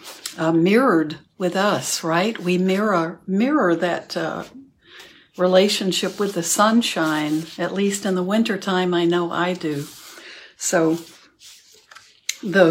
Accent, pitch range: American, 165-190 Hz